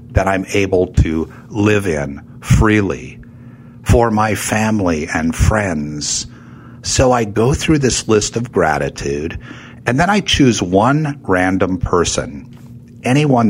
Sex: male